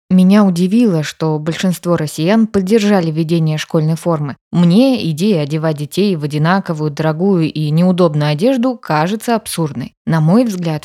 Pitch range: 160-195 Hz